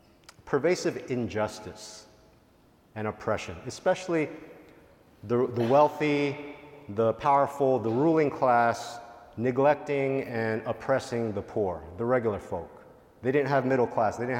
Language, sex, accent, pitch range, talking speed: English, male, American, 115-140 Hz, 115 wpm